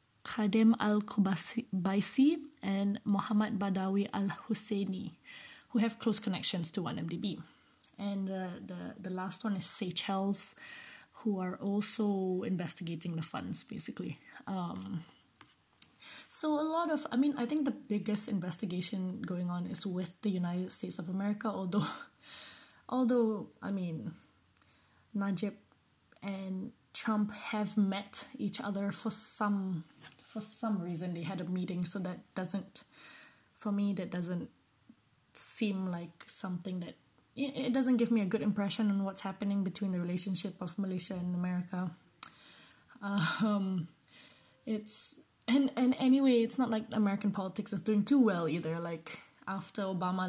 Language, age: English, 20-39